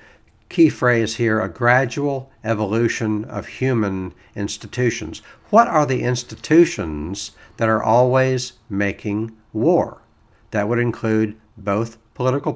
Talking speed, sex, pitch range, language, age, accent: 110 wpm, male, 100-125 Hz, English, 60-79, American